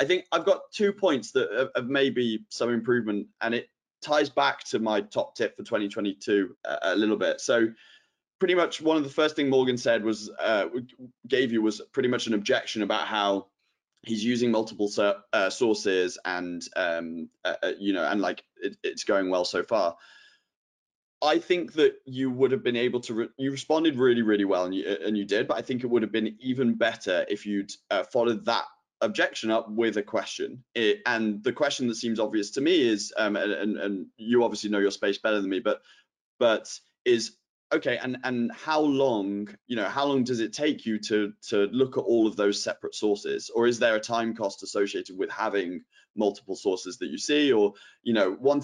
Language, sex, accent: English, male, British